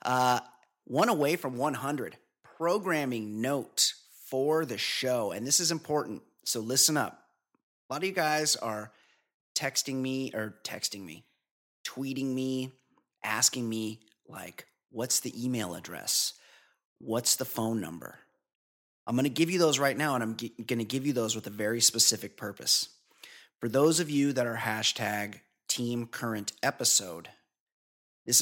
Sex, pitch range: male, 110-135 Hz